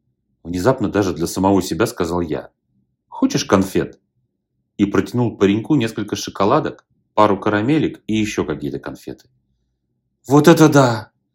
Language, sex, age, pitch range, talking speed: Russian, male, 30-49, 95-140 Hz, 120 wpm